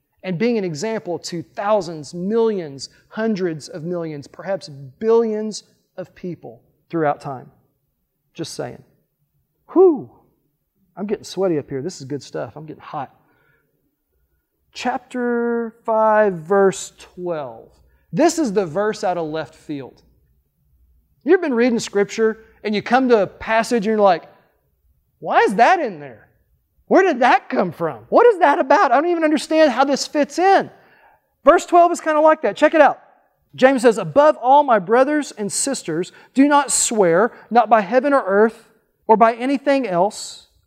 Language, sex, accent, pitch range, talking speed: English, male, American, 175-285 Hz, 160 wpm